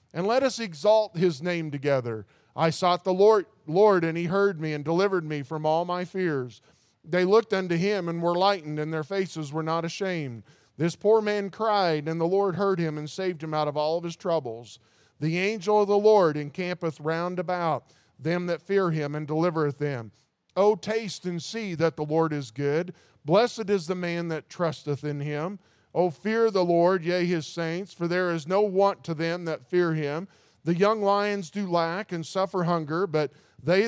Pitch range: 160-195 Hz